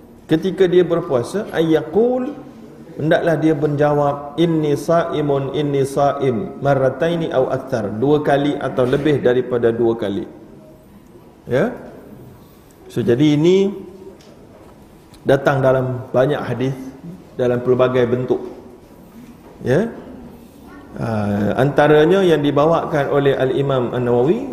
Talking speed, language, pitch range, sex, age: 100 wpm, Malayalam, 130-175 Hz, male, 40-59